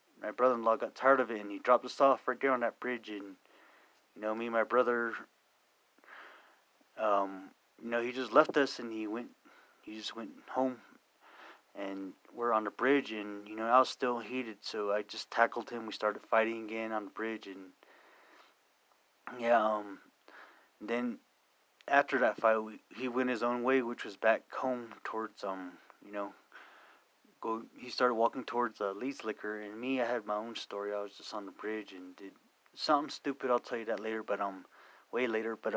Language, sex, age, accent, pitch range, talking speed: English, male, 30-49, American, 105-125 Hz, 200 wpm